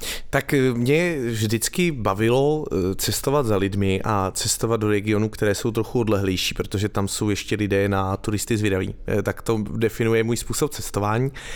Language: Slovak